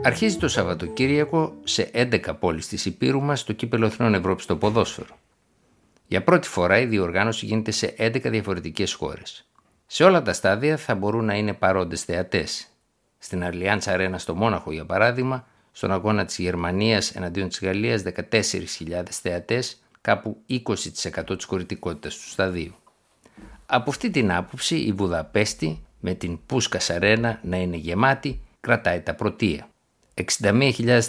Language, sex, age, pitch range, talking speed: Greek, male, 60-79, 90-115 Hz, 145 wpm